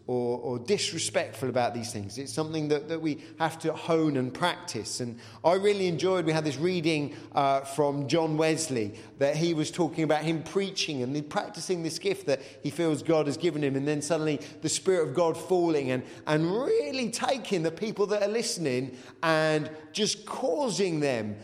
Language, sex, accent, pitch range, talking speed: English, male, British, 135-180 Hz, 190 wpm